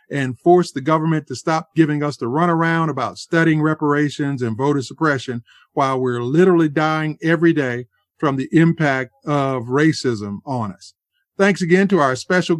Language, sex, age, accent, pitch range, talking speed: English, male, 50-69, American, 135-170 Hz, 160 wpm